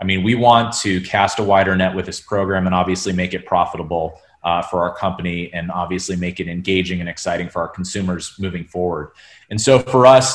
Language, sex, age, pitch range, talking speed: English, male, 30-49, 90-110 Hz, 215 wpm